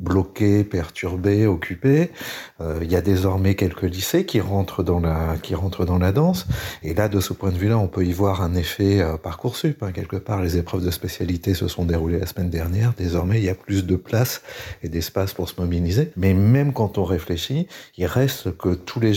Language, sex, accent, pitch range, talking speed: French, male, French, 90-110 Hz, 210 wpm